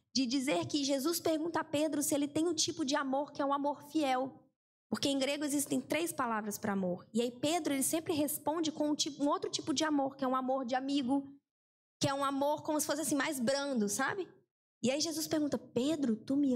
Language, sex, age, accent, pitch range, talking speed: Portuguese, female, 10-29, Brazilian, 230-300 Hz, 235 wpm